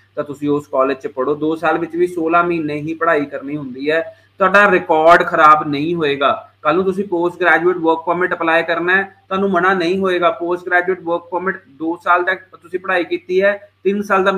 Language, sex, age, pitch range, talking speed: Punjabi, male, 30-49, 160-190 Hz, 205 wpm